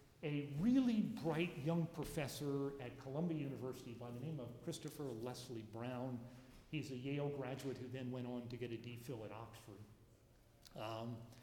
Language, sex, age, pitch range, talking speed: English, male, 50-69, 140-205 Hz, 160 wpm